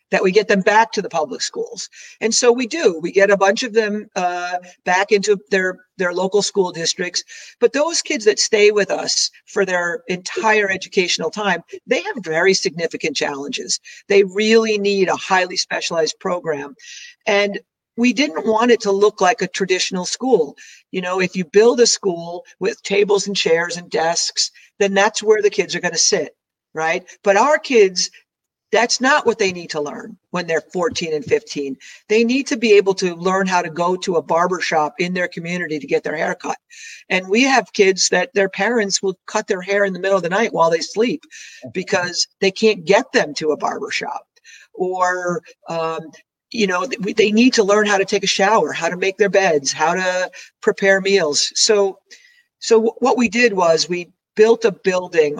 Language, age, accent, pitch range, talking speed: English, 50-69, American, 180-225 Hz, 195 wpm